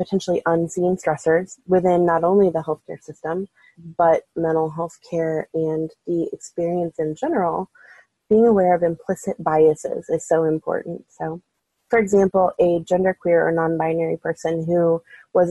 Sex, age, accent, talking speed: female, 20-39, American, 140 wpm